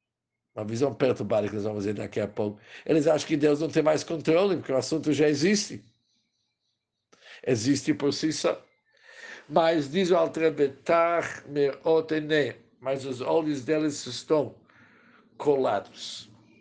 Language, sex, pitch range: Portuguese, male, 115-160 Hz